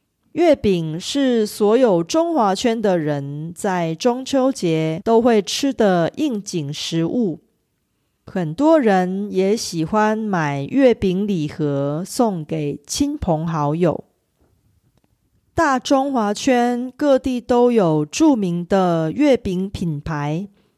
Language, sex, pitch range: Korean, female, 160-245 Hz